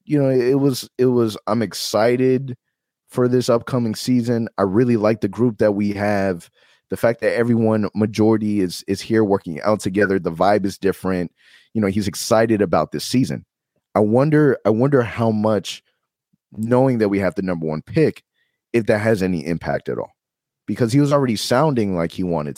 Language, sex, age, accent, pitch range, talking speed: English, male, 30-49, American, 90-115 Hz, 190 wpm